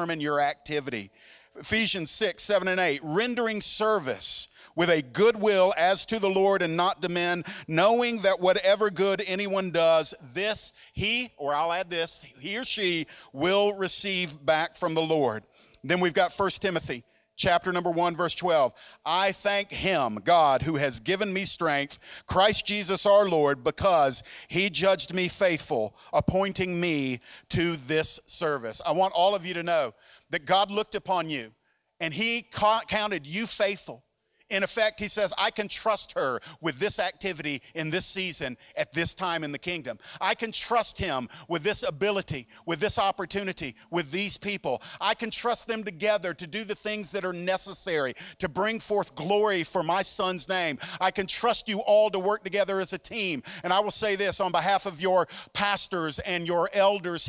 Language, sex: English, male